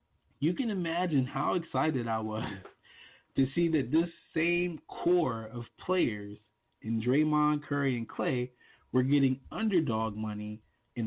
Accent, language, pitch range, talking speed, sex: American, English, 115-150 Hz, 135 wpm, male